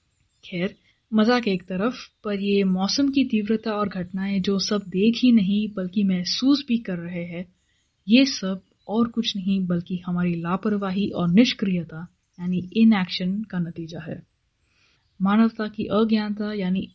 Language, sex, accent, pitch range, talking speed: Hindi, female, native, 180-225 Hz, 145 wpm